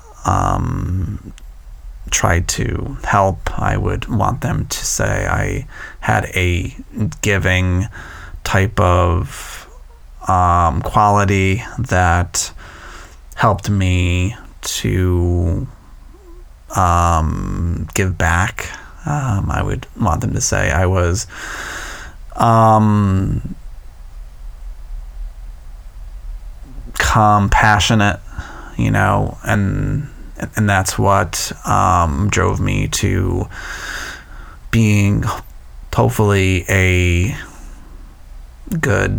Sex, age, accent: male, 20-39, American